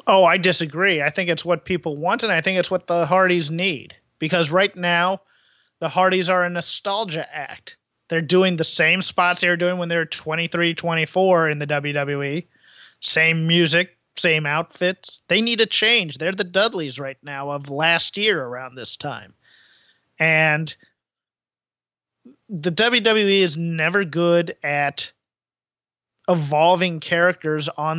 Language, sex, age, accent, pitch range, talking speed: English, male, 30-49, American, 155-180 Hz, 150 wpm